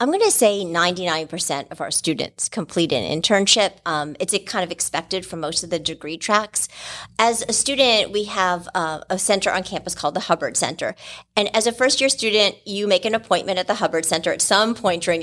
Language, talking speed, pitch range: English, 215 wpm, 175-215 Hz